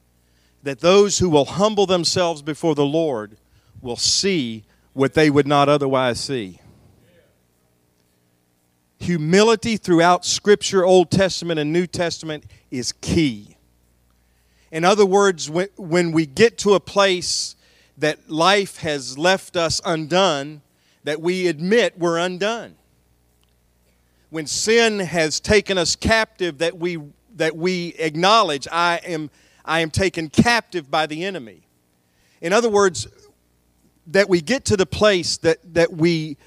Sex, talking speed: male, 130 wpm